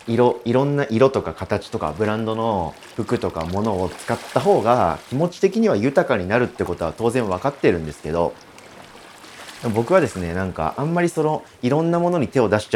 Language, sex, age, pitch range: Japanese, male, 40-59, 95-150 Hz